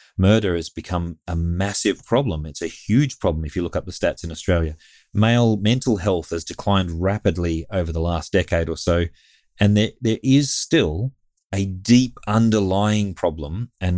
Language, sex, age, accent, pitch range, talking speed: English, male, 30-49, Australian, 85-100 Hz, 170 wpm